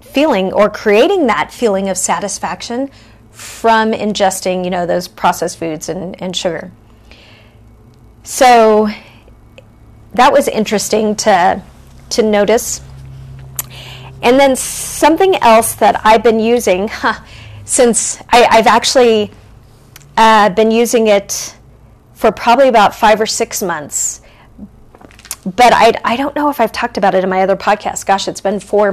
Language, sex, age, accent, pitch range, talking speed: English, female, 40-59, American, 185-240 Hz, 135 wpm